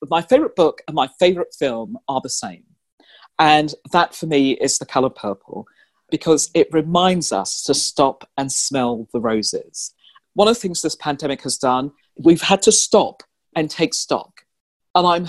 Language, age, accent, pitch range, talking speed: English, 40-59, British, 145-185 Hz, 175 wpm